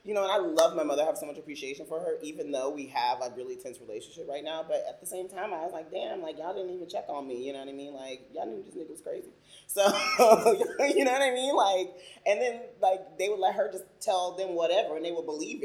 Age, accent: 30-49, American